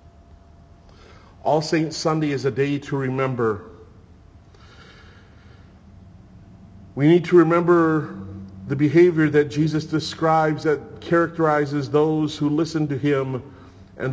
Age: 40-59